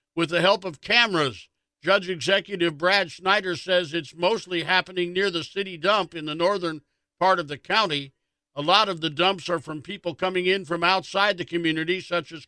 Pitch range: 165-195 Hz